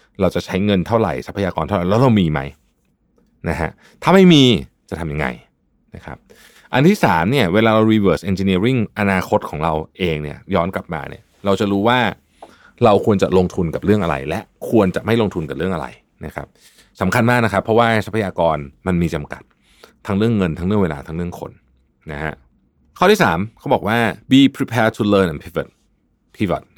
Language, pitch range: Thai, 90-115 Hz